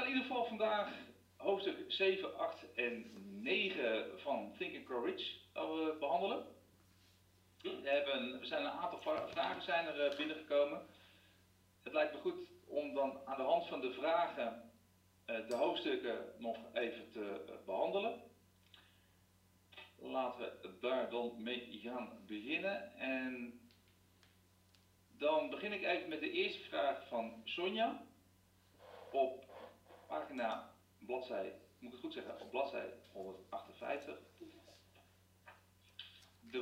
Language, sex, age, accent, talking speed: Dutch, male, 40-59, Dutch, 120 wpm